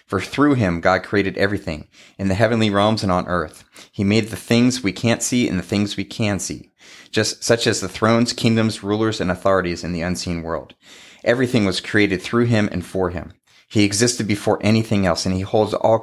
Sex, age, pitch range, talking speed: male, 30-49, 90-110 Hz, 210 wpm